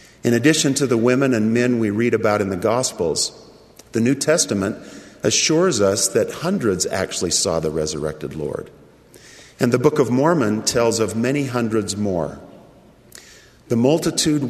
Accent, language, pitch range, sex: American, English, 100-130 Hz, male